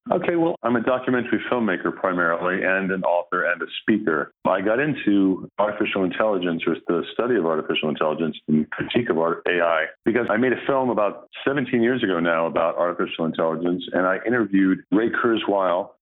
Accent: American